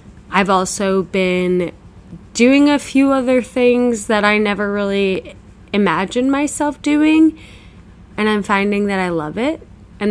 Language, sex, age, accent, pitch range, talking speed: English, female, 20-39, American, 175-210 Hz, 135 wpm